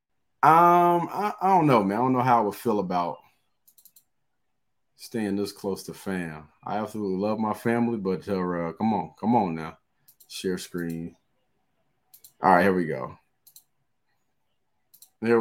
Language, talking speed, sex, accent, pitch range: English, 150 wpm, male, American, 100-135 Hz